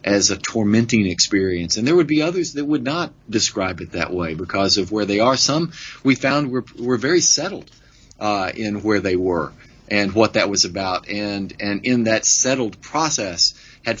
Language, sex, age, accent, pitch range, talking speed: English, male, 40-59, American, 100-125 Hz, 195 wpm